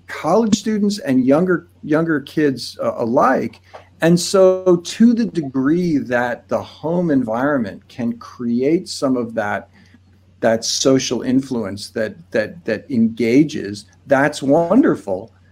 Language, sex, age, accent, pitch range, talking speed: English, male, 50-69, American, 115-175 Hz, 120 wpm